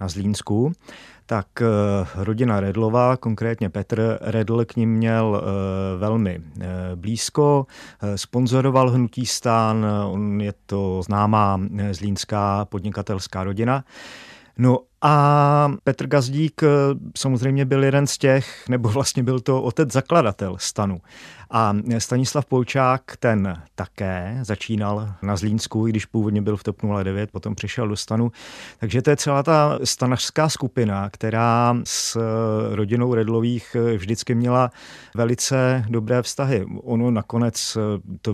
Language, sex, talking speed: Czech, male, 120 wpm